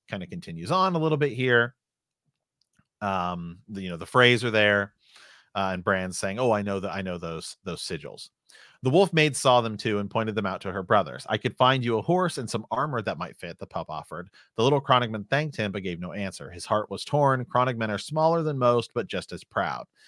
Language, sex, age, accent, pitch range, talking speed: English, male, 40-59, American, 95-125 Hz, 240 wpm